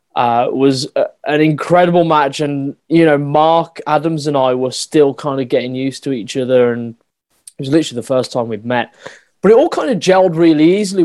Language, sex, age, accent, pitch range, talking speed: English, male, 20-39, British, 125-150 Hz, 205 wpm